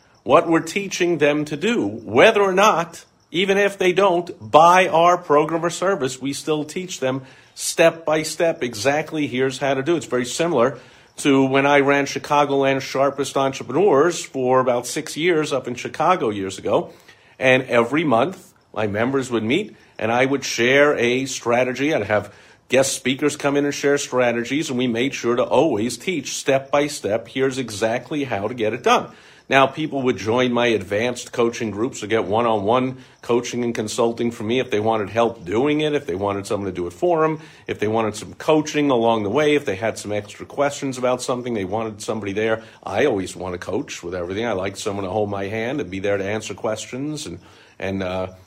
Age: 50-69